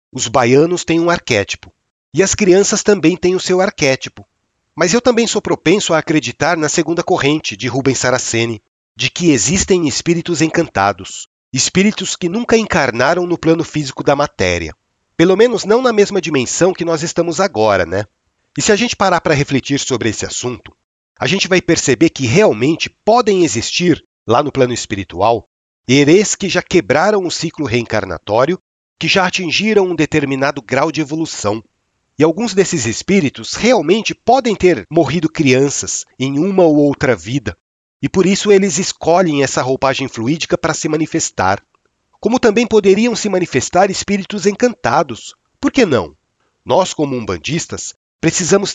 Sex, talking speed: male, 155 wpm